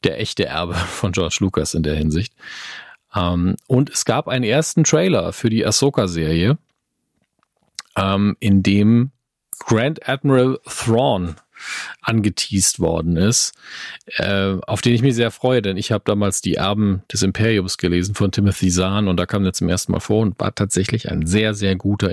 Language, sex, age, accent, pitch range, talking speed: German, male, 40-59, German, 95-125 Hz, 170 wpm